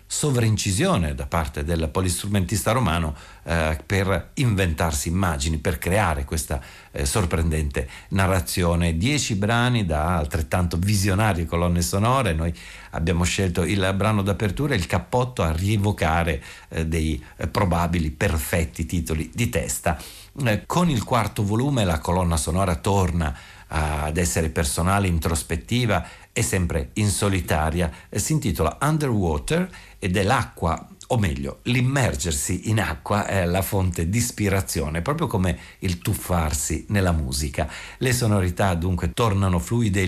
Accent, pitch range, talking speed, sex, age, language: native, 85-105 Hz, 130 wpm, male, 60-79, Italian